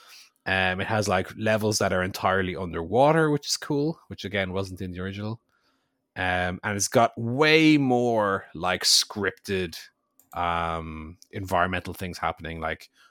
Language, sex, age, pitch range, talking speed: English, male, 20-39, 90-115 Hz, 140 wpm